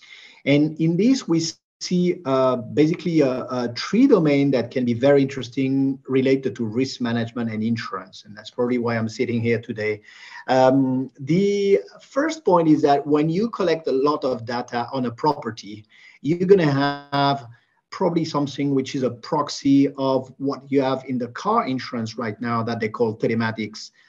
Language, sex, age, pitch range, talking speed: English, male, 40-59, 120-150 Hz, 175 wpm